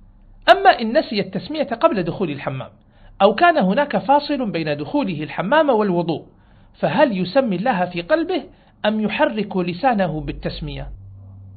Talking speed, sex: 125 wpm, male